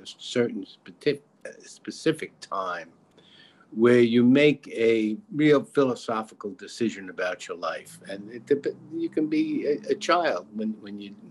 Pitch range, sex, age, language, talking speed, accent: 110-145 Hz, male, 50-69, English, 120 wpm, American